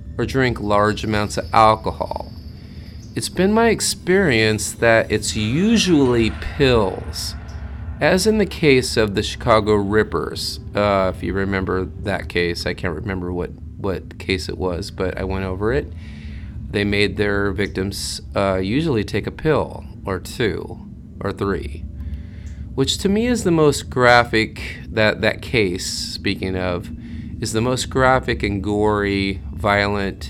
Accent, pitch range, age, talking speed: American, 90-115 Hz, 30-49, 145 wpm